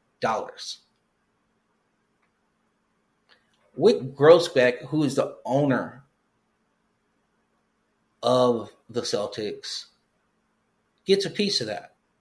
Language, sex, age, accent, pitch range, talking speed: English, male, 30-49, American, 125-195 Hz, 75 wpm